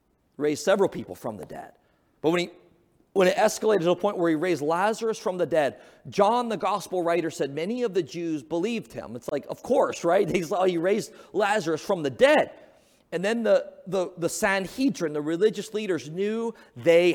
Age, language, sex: 30-49, English, male